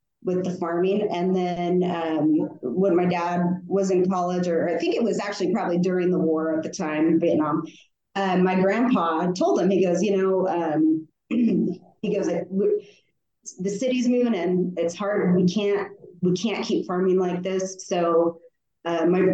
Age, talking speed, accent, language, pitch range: 30-49, 175 wpm, American, English, 170-195 Hz